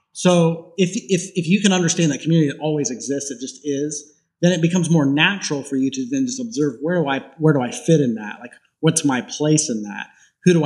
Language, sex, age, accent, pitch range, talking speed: English, male, 30-49, American, 140-190 Hz, 235 wpm